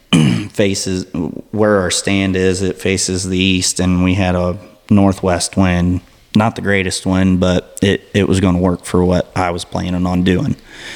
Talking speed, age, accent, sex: 180 wpm, 30-49, American, male